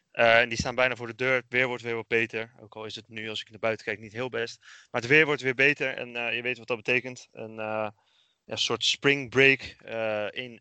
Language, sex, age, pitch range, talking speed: Dutch, male, 20-39, 110-125 Hz, 270 wpm